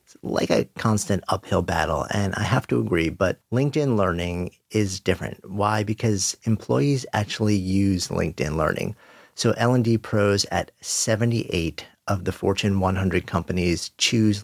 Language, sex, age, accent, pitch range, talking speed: English, male, 40-59, American, 90-115 Hz, 140 wpm